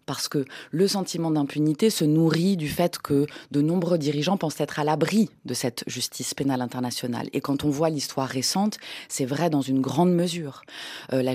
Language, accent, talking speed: French, French, 190 wpm